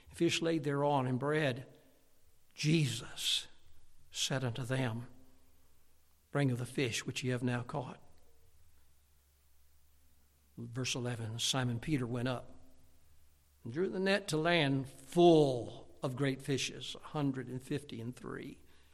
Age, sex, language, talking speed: 60-79, male, English, 125 wpm